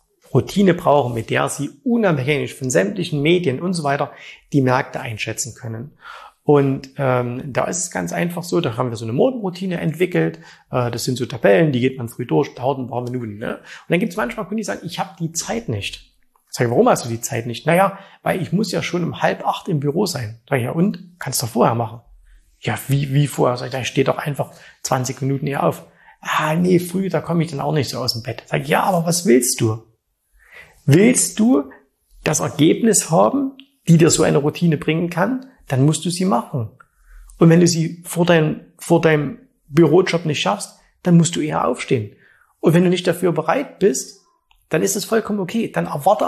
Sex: male